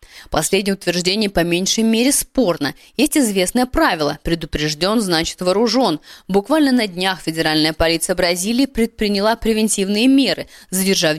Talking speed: 120 wpm